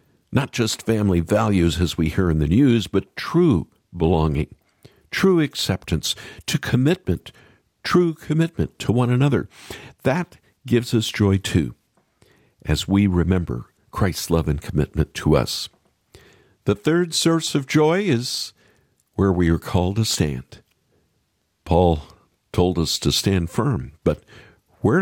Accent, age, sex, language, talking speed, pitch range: American, 50-69, male, English, 135 wpm, 85-130 Hz